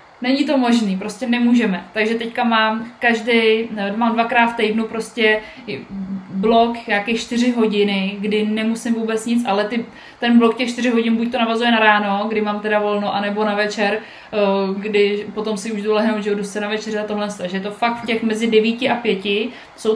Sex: female